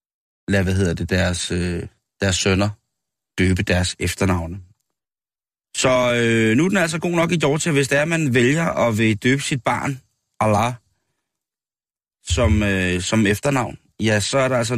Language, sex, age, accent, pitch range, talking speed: Danish, male, 30-49, native, 100-140 Hz, 160 wpm